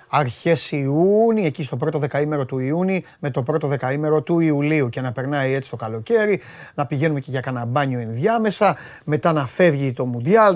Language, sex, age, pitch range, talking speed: Greek, male, 30-49, 150-230 Hz, 180 wpm